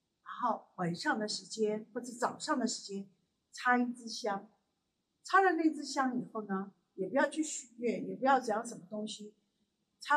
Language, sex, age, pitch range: Chinese, female, 50-69, 200-285 Hz